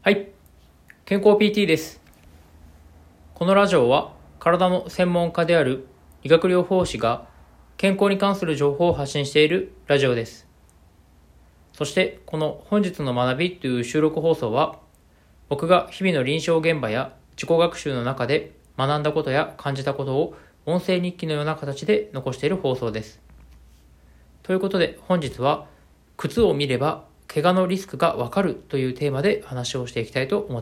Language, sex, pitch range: Japanese, male, 110-170 Hz